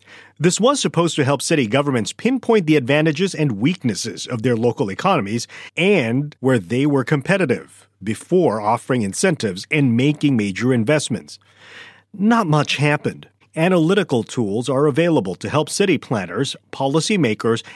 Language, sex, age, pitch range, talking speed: English, male, 40-59, 120-165 Hz, 135 wpm